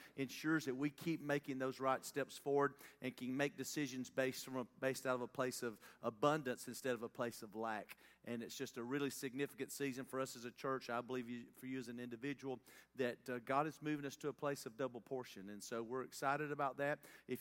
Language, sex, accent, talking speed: English, male, American, 230 wpm